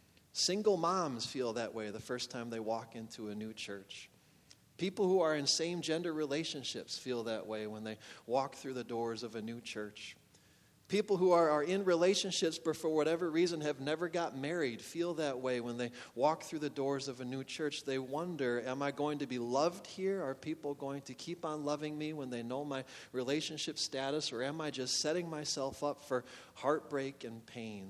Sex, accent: male, American